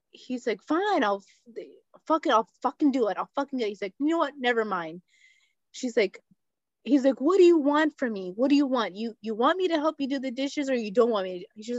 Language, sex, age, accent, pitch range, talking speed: English, female, 20-39, American, 220-310 Hz, 255 wpm